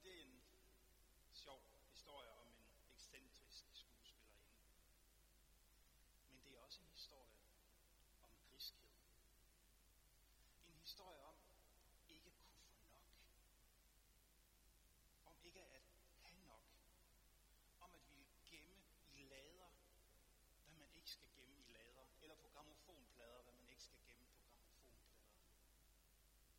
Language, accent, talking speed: Danish, native, 115 wpm